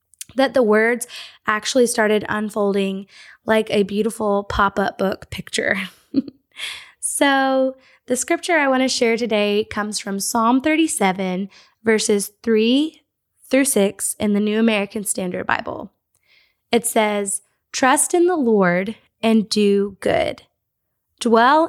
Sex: female